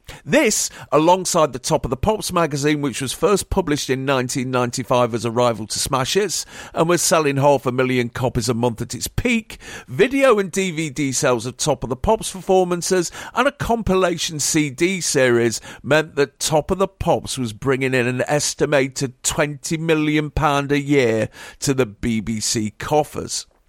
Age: 50-69